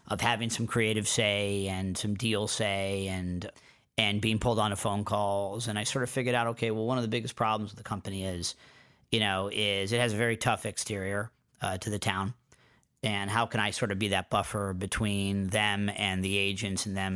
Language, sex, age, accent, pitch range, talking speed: English, male, 40-59, American, 100-115 Hz, 215 wpm